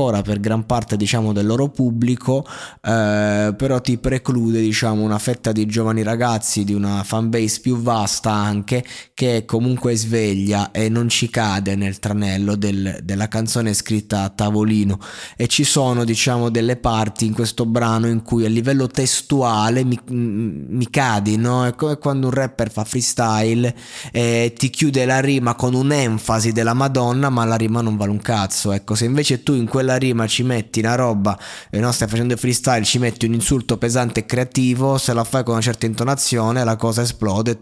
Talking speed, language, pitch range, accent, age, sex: 185 wpm, Italian, 110-125 Hz, native, 20-39, male